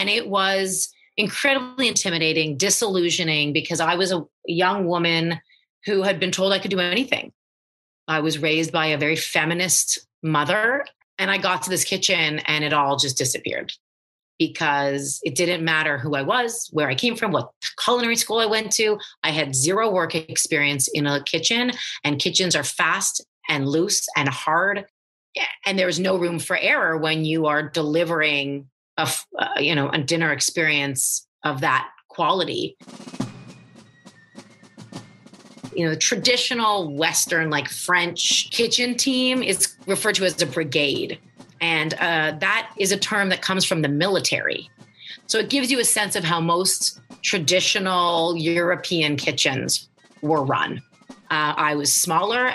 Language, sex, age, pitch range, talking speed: English, female, 30-49, 155-210 Hz, 155 wpm